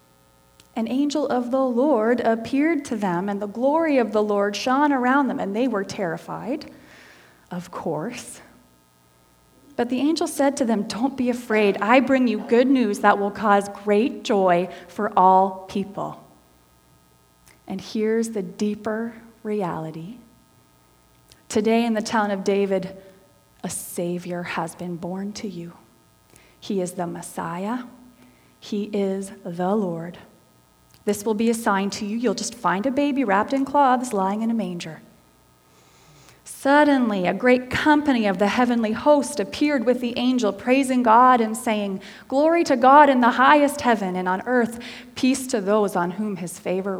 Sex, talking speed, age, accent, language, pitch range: female, 155 wpm, 30-49, American, English, 180-250 Hz